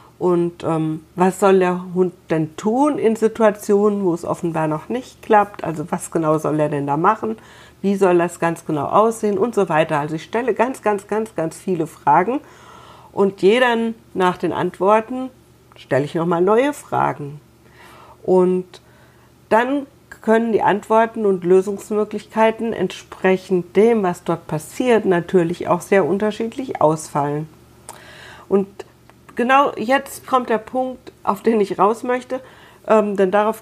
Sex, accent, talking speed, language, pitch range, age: female, German, 150 wpm, German, 180-220 Hz, 50-69